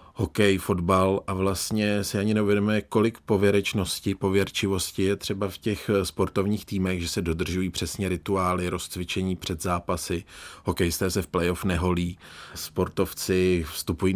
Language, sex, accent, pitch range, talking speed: Czech, male, native, 95-115 Hz, 130 wpm